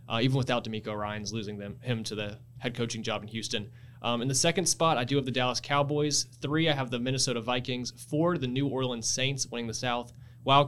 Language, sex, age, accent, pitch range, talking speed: English, male, 20-39, American, 110-125 Hz, 230 wpm